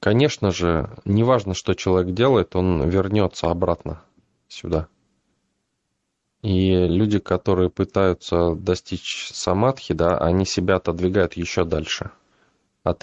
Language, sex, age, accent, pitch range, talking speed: Russian, male, 20-39, native, 85-100 Hz, 105 wpm